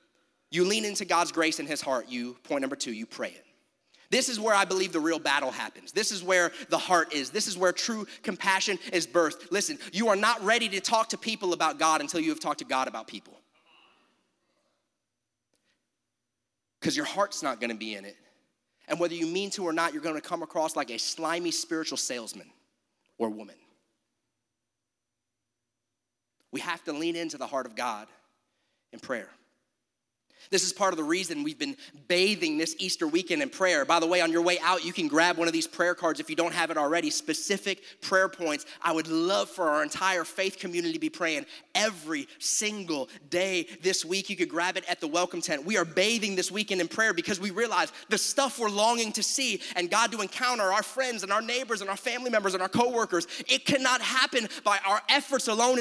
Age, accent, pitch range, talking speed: 30-49, American, 165-225 Hz, 210 wpm